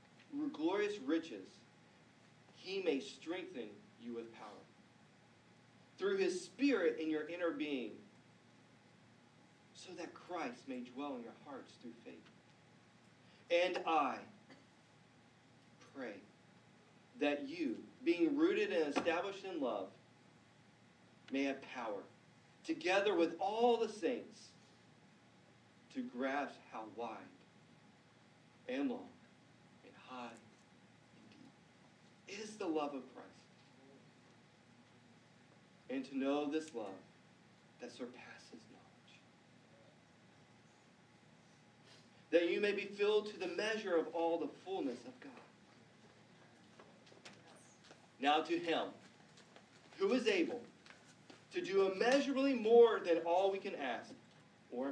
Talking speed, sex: 105 wpm, male